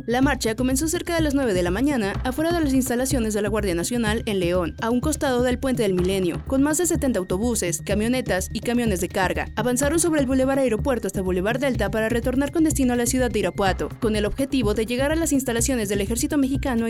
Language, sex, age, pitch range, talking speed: Spanish, female, 30-49, 210-285 Hz, 230 wpm